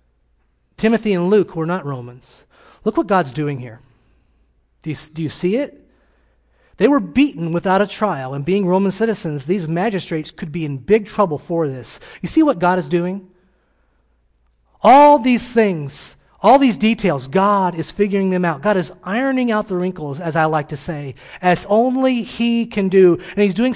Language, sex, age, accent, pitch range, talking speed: English, male, 30-49, American, 145-205 Hz, 180 wpm